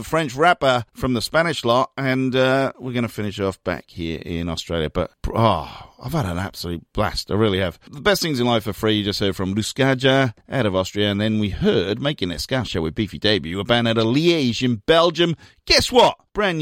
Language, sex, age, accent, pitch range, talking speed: English, male, 40-59, British, 95-150 Hz, 220 wpm